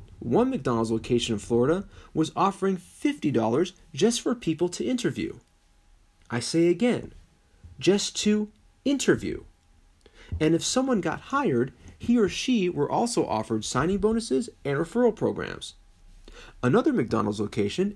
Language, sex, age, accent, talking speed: English, male, 30-49, American, 125 wpm